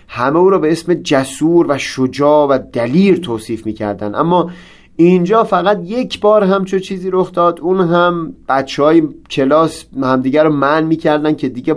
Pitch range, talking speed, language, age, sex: 135-175 Hz, 165 wpm, Persian, 30-49, male